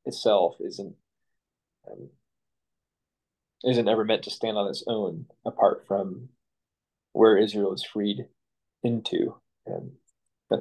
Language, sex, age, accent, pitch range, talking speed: English, male, 20-39, American, 105-135 Hz, 115 wpm